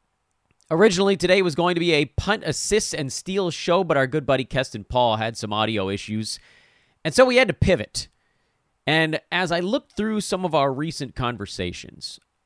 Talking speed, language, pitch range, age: 185 wpm, English, 110-170 Hz, 30-49